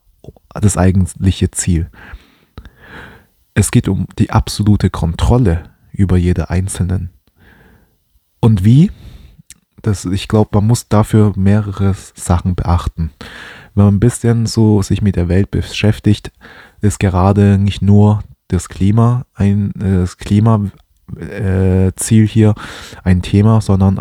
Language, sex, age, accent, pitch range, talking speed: German, male, 20-39, German, 90-110 Hz, 115 wpm